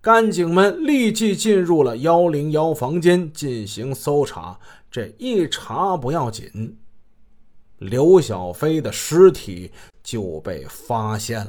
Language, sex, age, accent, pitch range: Chinese, male, 30-49, native, 110-190 Hz